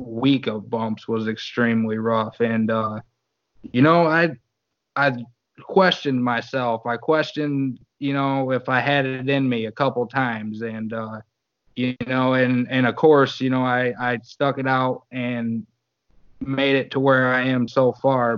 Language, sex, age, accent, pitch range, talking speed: English, male, 20-39, American, 115-135 Hz, 165 wpm